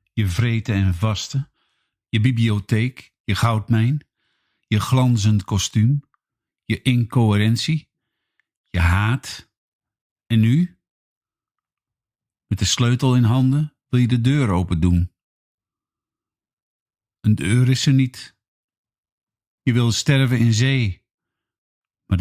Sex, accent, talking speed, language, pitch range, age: male, Dutch, 105 wpm, Dutch, 95-120 Hz, 50-69